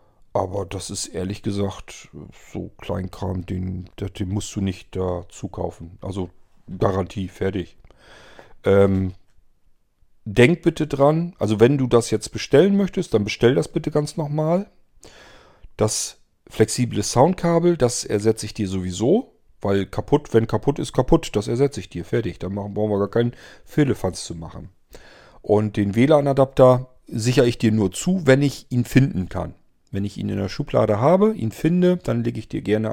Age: 40-59